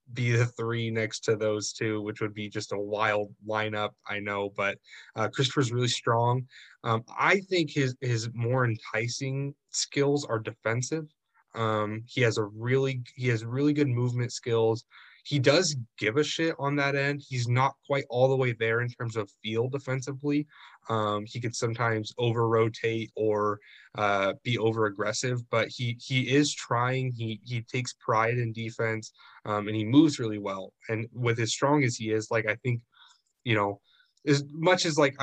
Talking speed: 180 wpm